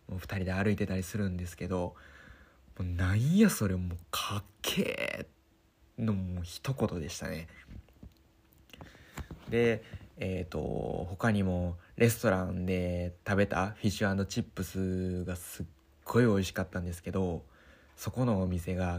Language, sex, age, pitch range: Japanese, male, 20-39, 90-115 Hz